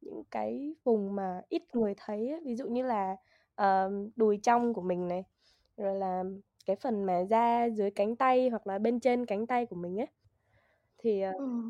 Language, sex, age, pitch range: Vietnamese, female, 10-29, 205-245 Hz